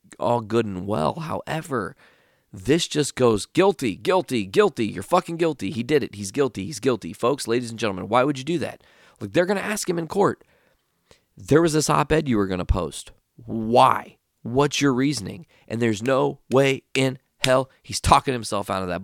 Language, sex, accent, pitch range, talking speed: English, male, American, 95-130 Hz, 200 wpm